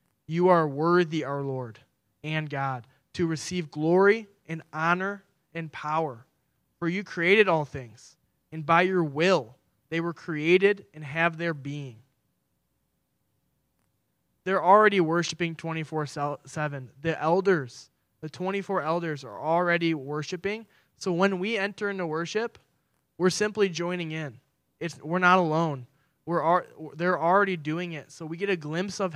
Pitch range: 150-190 Hz